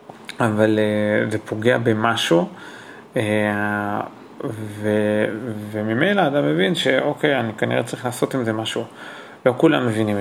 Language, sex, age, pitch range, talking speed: Hebrew, male, 30-49, 110-135 Hz, 120 wpm